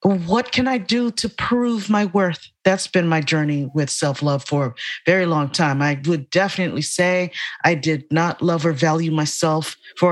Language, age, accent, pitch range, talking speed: English, 40-59, American, 140-170 Hz, 185 wpm